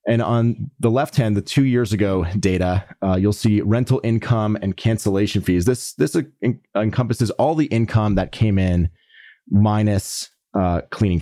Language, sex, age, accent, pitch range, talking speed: English, male, 30-49, American, 90-115 Hz, 170 wpm